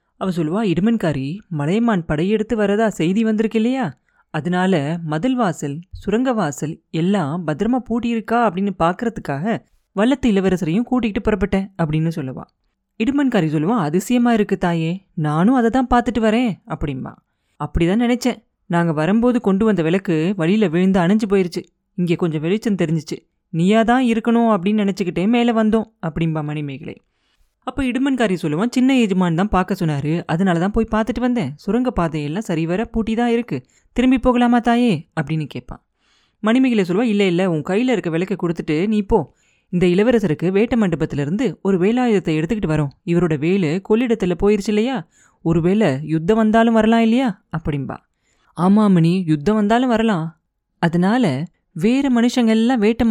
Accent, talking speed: native, 140 wpm